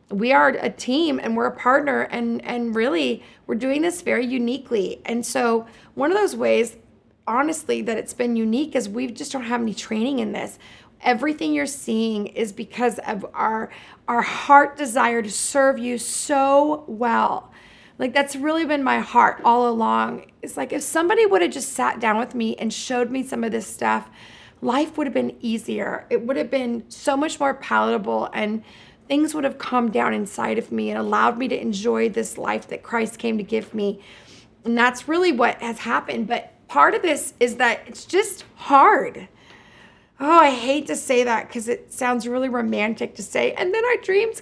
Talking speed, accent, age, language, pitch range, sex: 190 wpm, American, 30-49, English, 225-285 Hz, female